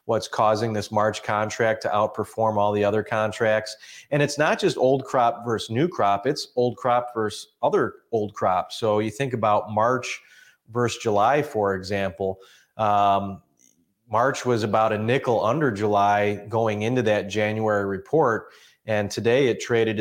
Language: English